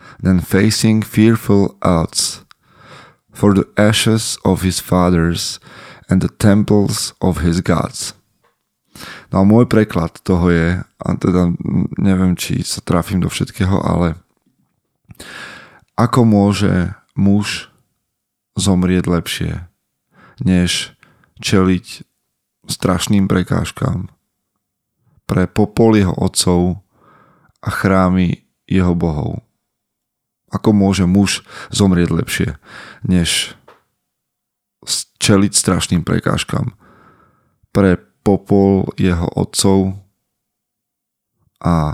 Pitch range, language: 90-105 Hz, Slovak